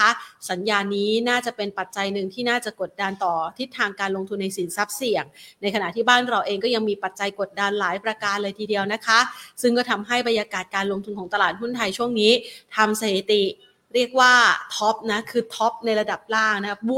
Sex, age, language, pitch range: female, 30-49, Thai, 205-250 Hz